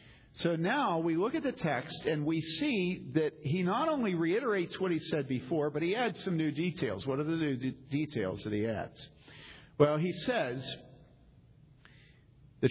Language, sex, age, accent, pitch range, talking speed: English, male, 50-69, American, 115-165 Hz, 175 wpm